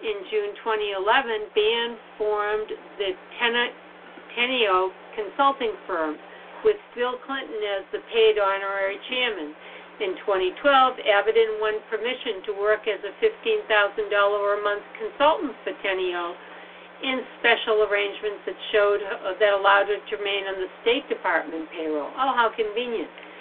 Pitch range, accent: 205-280 Hz, American